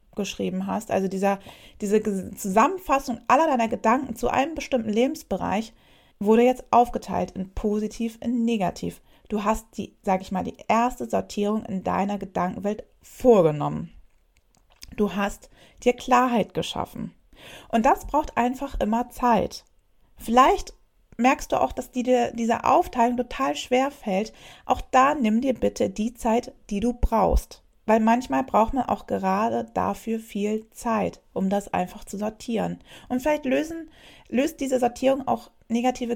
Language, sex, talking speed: German, female, 145 wpm